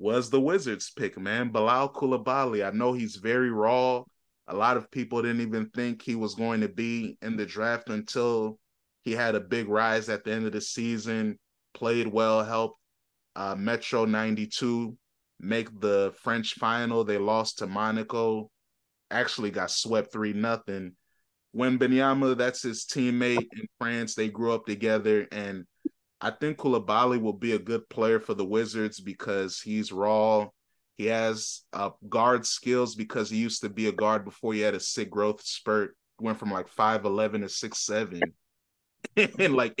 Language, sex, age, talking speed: English, male, 20-39, 165 wpm